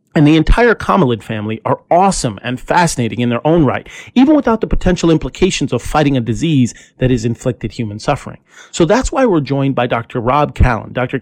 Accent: American